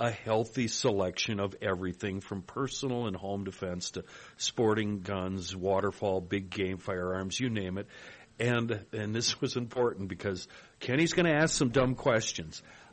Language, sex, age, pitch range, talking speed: English, male, 50-69, 100-130 Hz, 155 wpm